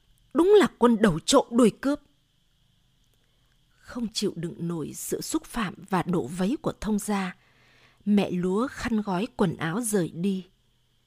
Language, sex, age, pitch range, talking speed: Vietnamese, female, 20-39, 170-240 Hz, 150 wpm